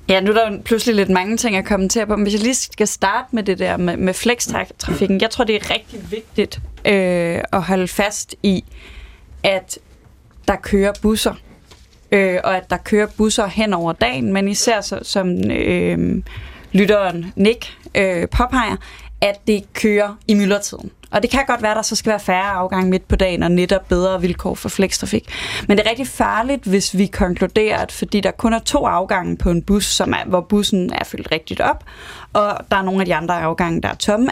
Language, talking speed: Danish, 200 wpm